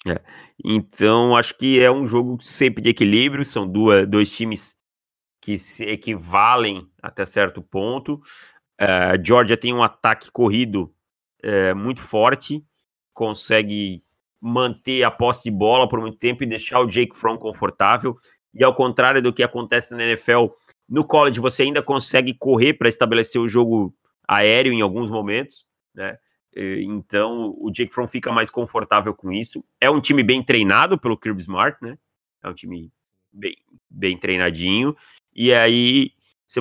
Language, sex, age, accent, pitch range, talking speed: Portuguese, male, 30-49, Brazilian, 105-125 Hz, 150 wpm